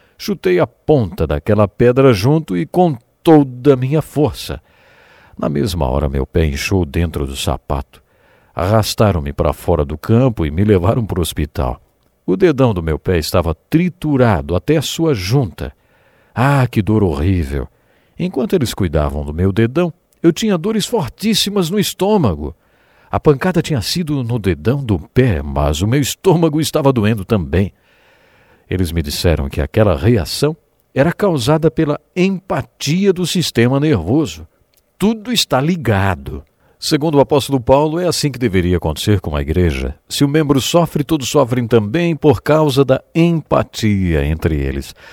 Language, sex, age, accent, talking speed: English, male, 60-79, Brazilian, 155 wpm